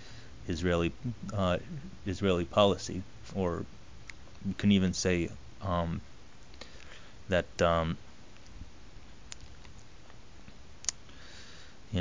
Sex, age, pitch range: male, 30-49, 85-105 Hz